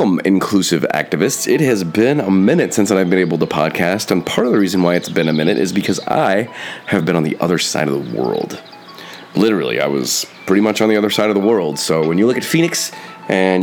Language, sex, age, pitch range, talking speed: English, male, 30-49, 90-110 Hz, 240 wpm